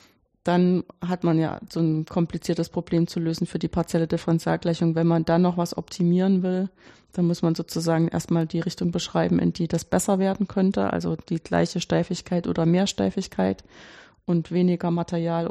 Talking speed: 175 wpm